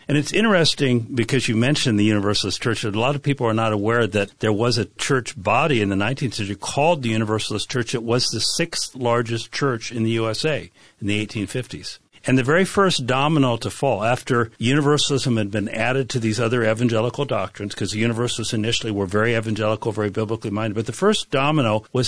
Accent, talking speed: American, 200 wpm